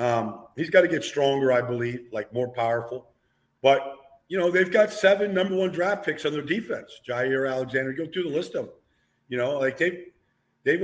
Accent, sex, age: American, male, 50-69